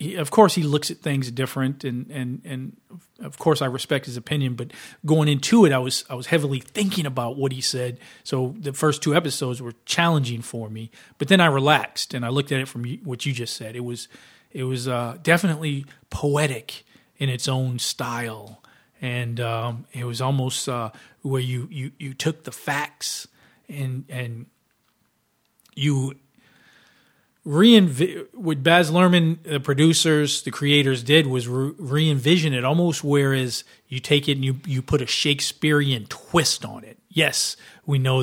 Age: 40-59